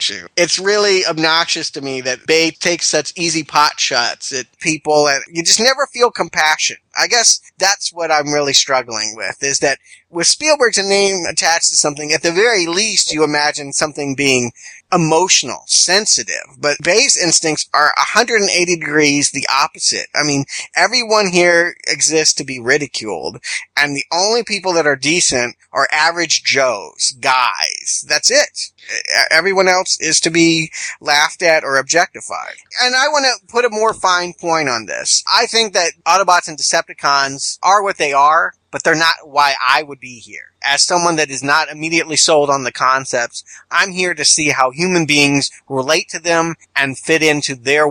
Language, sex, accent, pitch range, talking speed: English, male, American, 145-175 Hz, 170 wpm